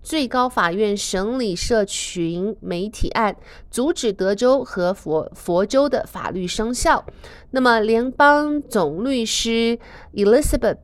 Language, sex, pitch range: Chinese, female, 185-250 Hz